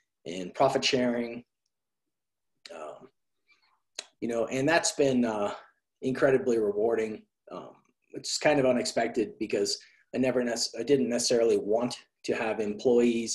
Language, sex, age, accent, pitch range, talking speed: English, male, 30-49, American, 120-145 Hz, 125 wpm